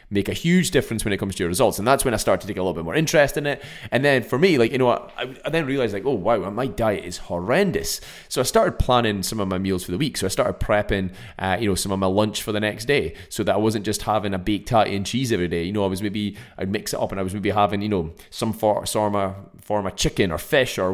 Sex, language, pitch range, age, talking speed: male, English, 95-120 Hz, 20-39, 300 wpm